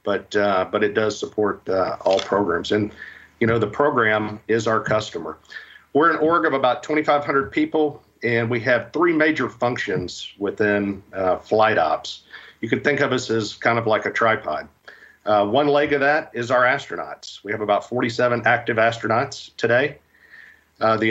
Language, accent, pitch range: English, American, 105-125 Hz